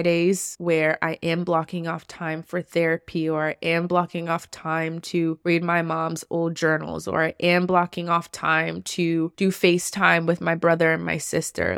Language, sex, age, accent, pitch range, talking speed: English, female, 20-39, American, 165-185 Hz, 185 wpm